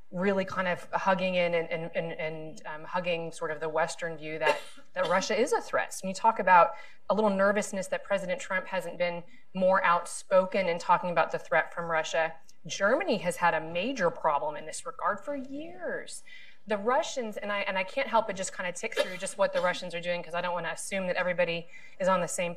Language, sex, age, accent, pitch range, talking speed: English, female, 30-49, American, 170-195 Hz, 230 wpm